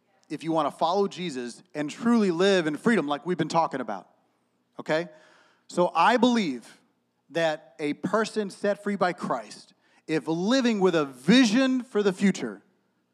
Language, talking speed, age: English, 160 wpm, 30-49